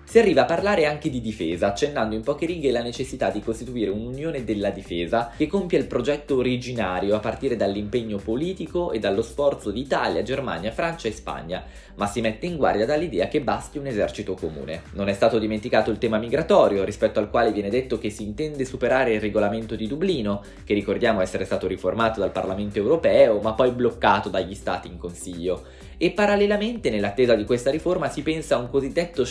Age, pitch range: 20-39, 100-150 Hz